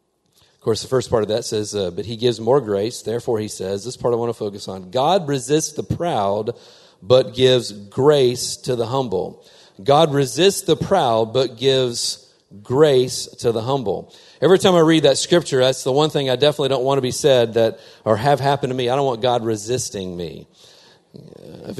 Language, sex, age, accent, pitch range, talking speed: English, male, 40-59, American, 125-165 Hz, 205 wpm